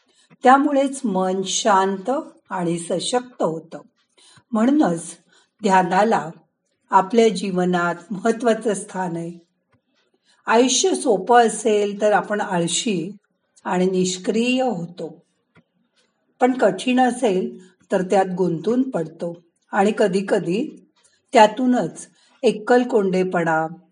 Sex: female